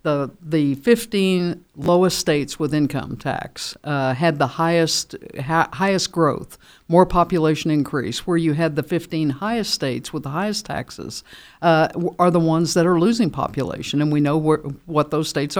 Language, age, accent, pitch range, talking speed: English, 60-79, American, 145-170 Hz, 170 wpm